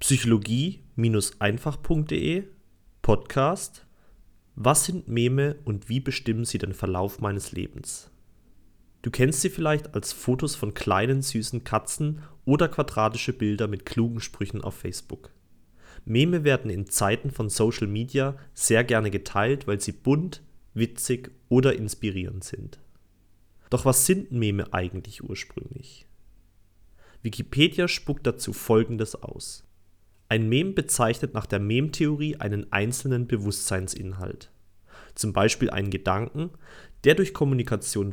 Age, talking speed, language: 30-49, 120 wpm, German